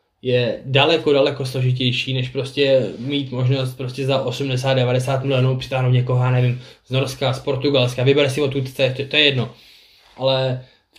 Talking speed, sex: 155 wpm, male